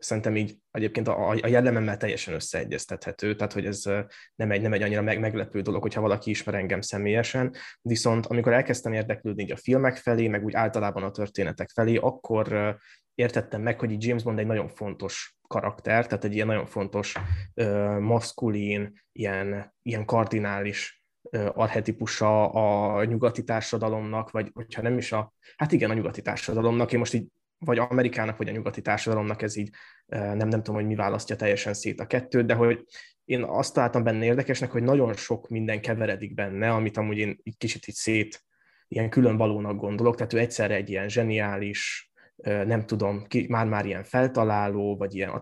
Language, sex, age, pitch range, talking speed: Hungarian, male, 20-39, 105-115 Hz, 165 wpm